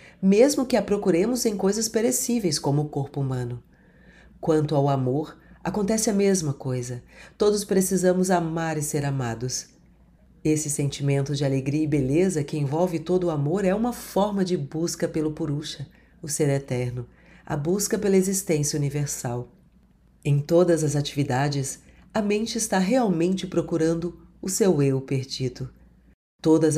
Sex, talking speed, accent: female, 145 wpm, Brazilian